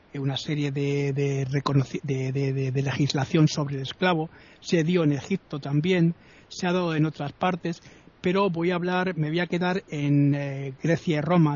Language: Spanish